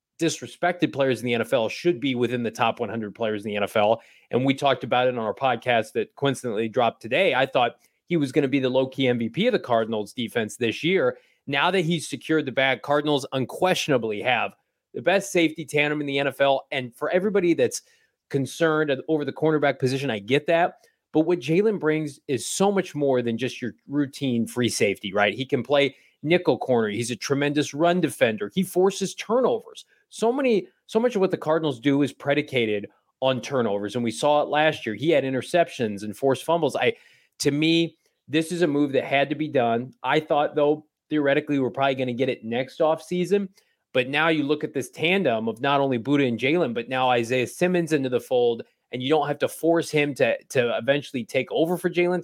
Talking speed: 210 wpm